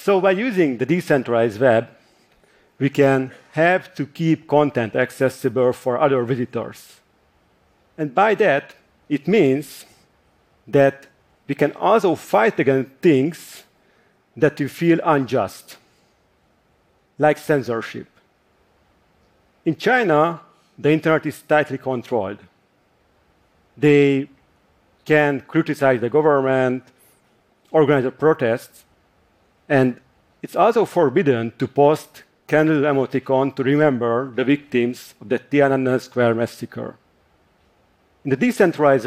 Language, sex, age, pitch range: Korean, male, 50-69, 125-155 Hz